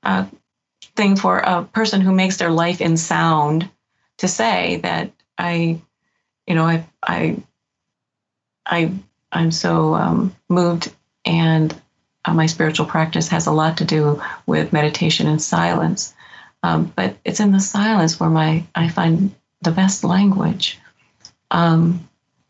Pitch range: 170-200 Hz